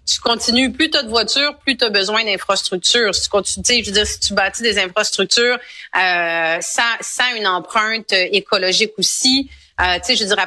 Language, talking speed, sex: French, 200 wpm, female